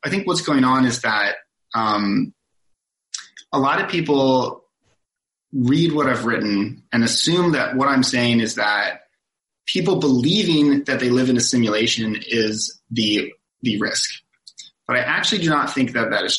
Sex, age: male, 30-49